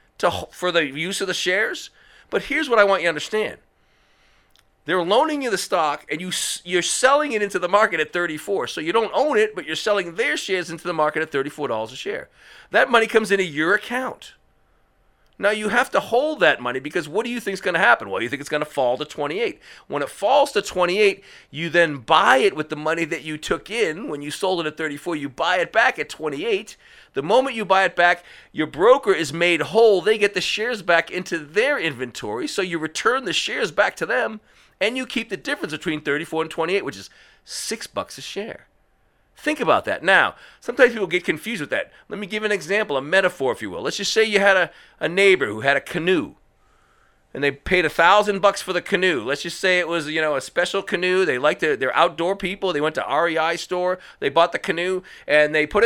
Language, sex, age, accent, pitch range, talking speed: English, male, 40-59, American, 160-210 Hz, 235 wpm